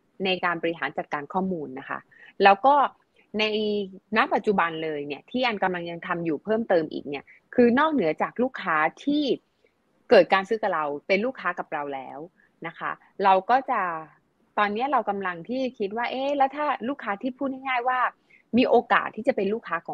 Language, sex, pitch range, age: Thai, female, 170-235 Hz, 20-39